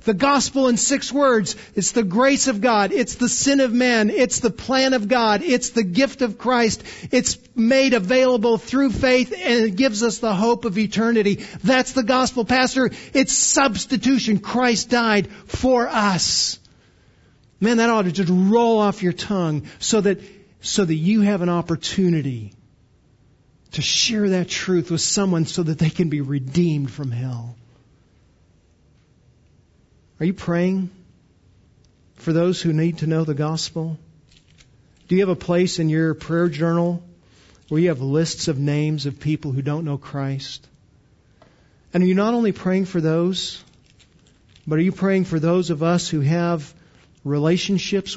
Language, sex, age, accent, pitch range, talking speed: English, male, 50-69, American, 150-220 Hz, 160 wpm